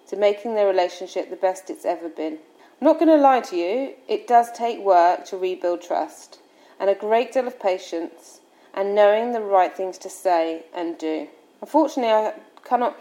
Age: 30-49